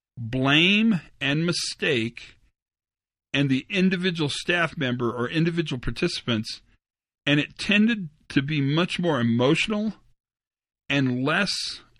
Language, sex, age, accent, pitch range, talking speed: English, male, 50-69, American, 120-170 Hz, 105 wpm